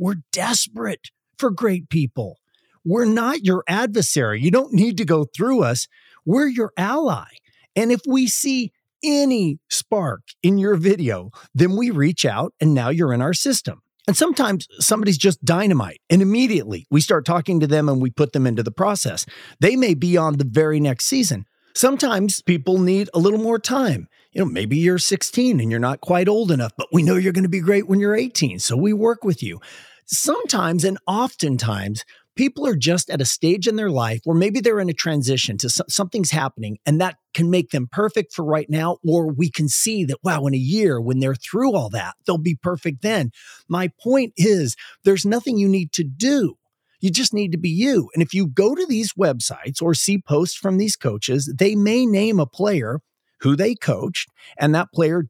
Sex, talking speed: male, 205 wpm